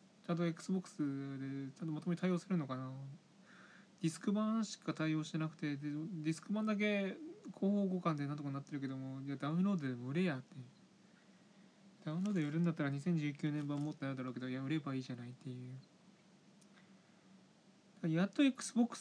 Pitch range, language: 140-195 Hz, Japanese